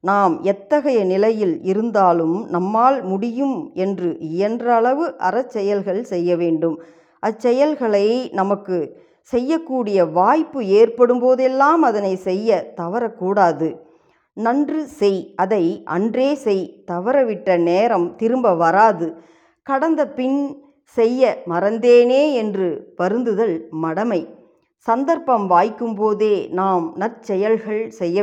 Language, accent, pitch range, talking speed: Tamil, native, 185-255 Hz, 85 wpm